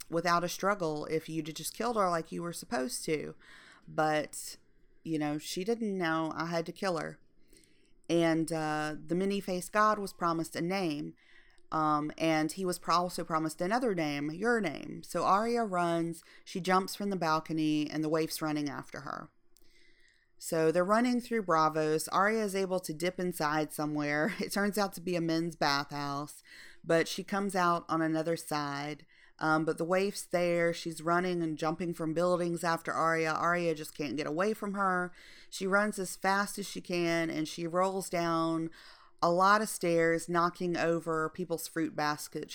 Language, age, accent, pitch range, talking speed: English, 40-59, American, 155-185 Hz, 175 wpm